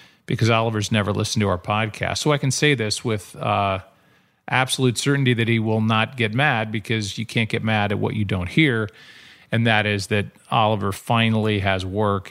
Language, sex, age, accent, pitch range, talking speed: English, male, 40-59, American, 105-130 Hz, 195 wpm